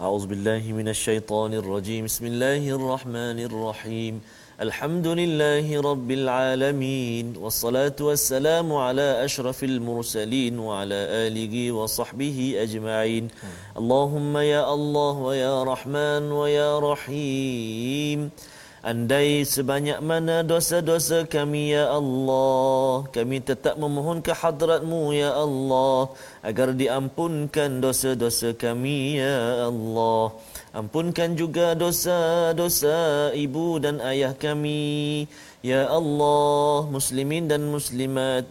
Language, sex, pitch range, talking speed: Malayalam, male, 120-150 Hz, 50 wpm